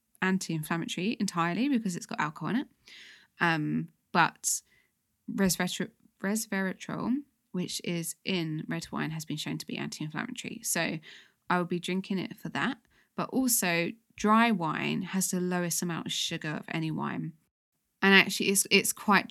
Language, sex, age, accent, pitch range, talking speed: English, female, 20-39, British, 165-205 Hz, 150 wpm